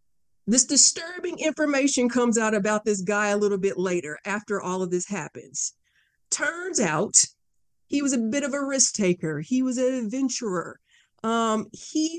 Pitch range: 195-250 Hz